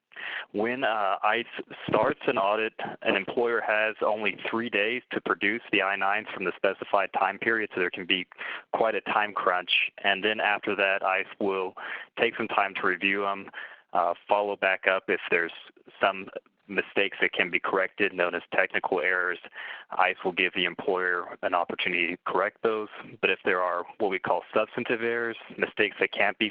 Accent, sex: American, male